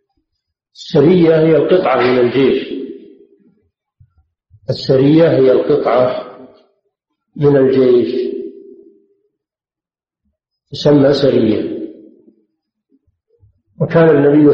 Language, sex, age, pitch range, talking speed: Arabic, male, 50-69, 125-190 Hz, 55 wpm